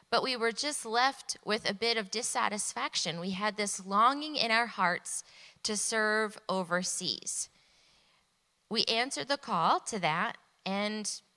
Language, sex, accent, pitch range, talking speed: English, female, American, 185-245 Hz, 145 wpm